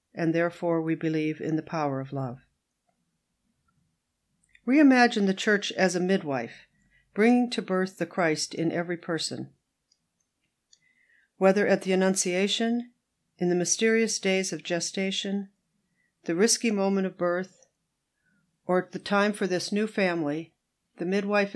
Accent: American